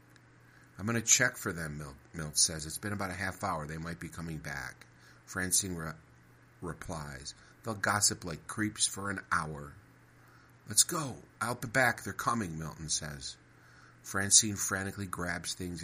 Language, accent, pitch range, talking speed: English, American, 80-100 Hz, 155 wpm